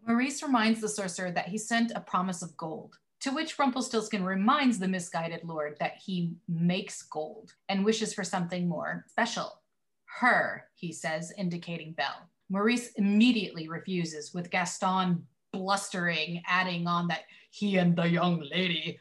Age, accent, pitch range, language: 30-49, American, 175-225 Hz, English